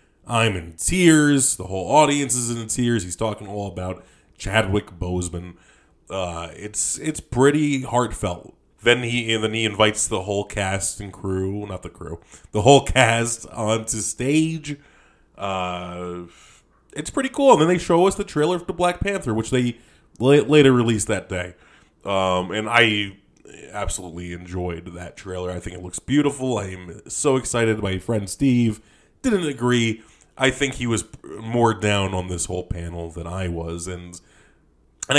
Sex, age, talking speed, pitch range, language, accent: male, 20-39, 165 wpm, 90-120 Hz, English, American